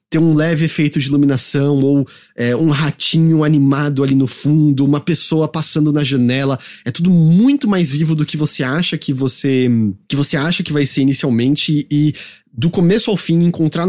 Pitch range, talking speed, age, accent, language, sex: 135-170 Hz, 185 wpm, 30-49, Brazilian, English, male